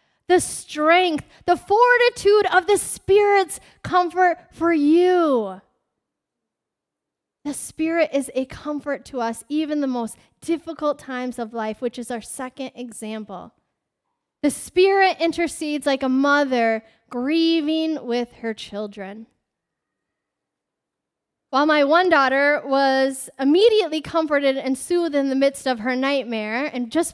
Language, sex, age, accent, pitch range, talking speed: English, female, 10-29, American, 250-330 Hz, 125 wpm